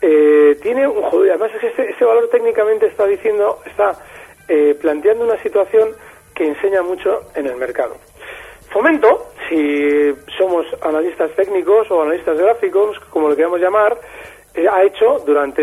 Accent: Spanish